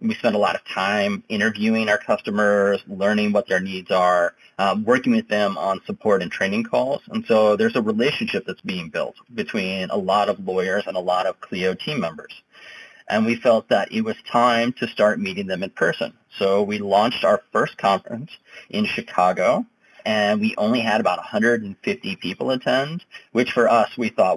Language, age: English, 30-49